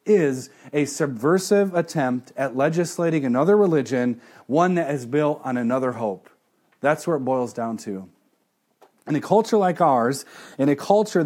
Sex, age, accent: male, 30-49, American